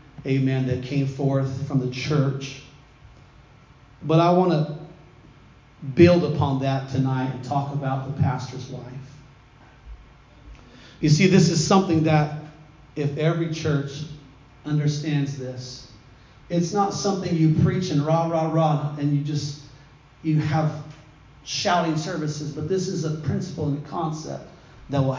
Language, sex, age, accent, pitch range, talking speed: English, male, 40-59, American, 140-165 Hz, 140 wpm